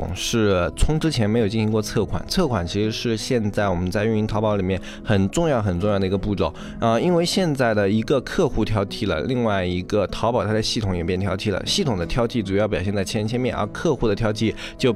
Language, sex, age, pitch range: Chinese, male, 20-39, 100-120 Hz